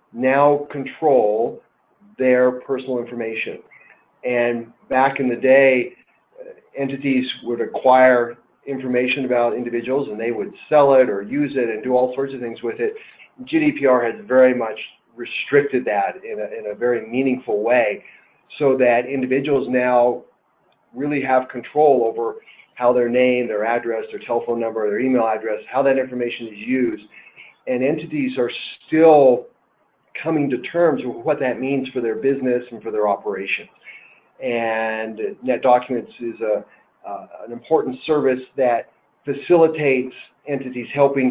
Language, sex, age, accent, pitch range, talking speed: English, male, 40-59, American, 120-140 Hz, 140 wpm